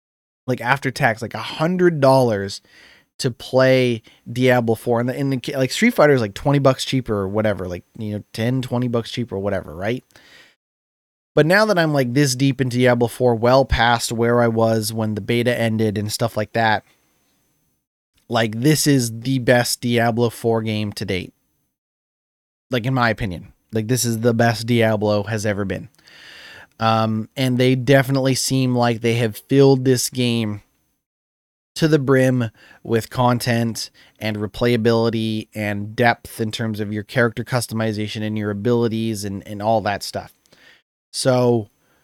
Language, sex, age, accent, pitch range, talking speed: English, male, 20-39, American, 110-130 Hz, 165 wpm